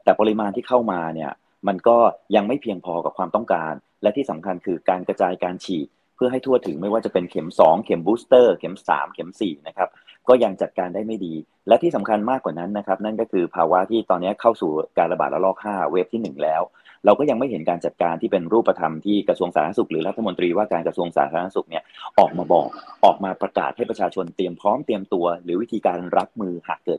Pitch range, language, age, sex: 90-115 Hz, Thai, 30-49, male